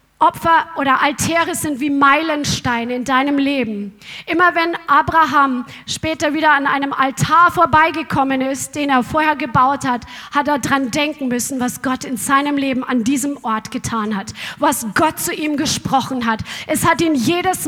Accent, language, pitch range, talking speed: German, German, 275-320 Hz, 165 wpm